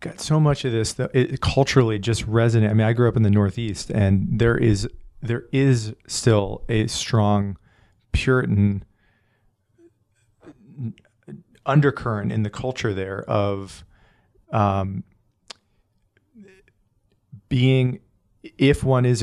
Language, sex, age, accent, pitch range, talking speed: English, male, 40-59, American, 100-120 Hz, 115 wpm